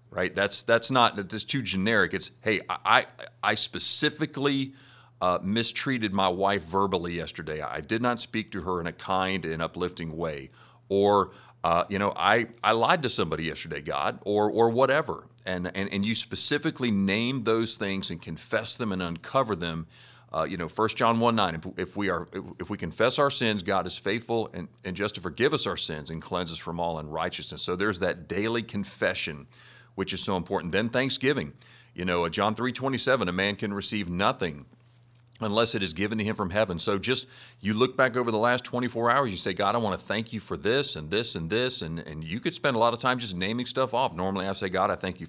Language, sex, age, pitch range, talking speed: English, male, 40-59, 90-120 Hz, 215 wpm